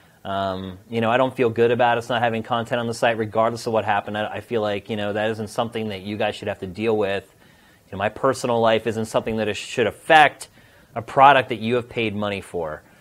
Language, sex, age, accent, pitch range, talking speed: English, male, 30-49, American, 100-120 Hz, 255 wpm